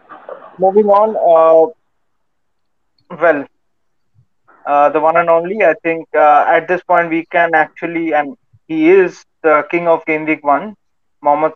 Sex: male